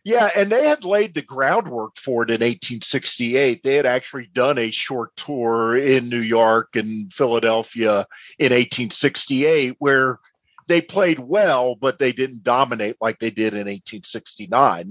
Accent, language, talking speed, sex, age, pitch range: American, English, 155 wpm, male, 40-59, 115-140 Hz